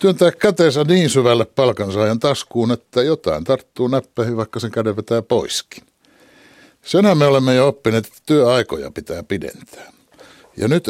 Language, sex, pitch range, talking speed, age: Finnish, male, 110-150 Hz, 145 wpm, 60-79